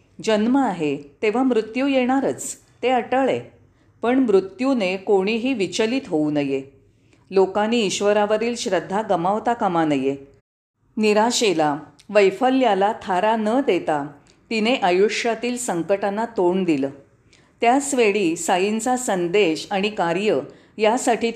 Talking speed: 100 wpm